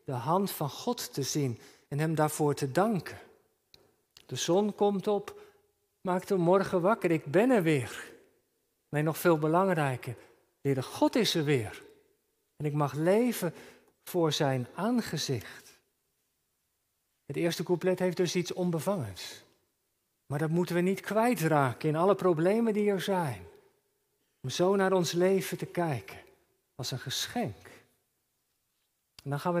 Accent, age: Dutch, 50-69